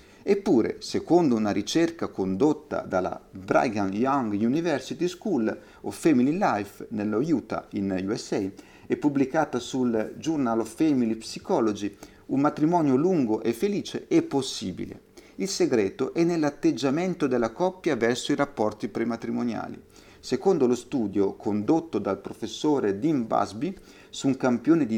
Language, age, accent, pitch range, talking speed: Italian, 50-69, native, 110-150 Hz, 125 wpm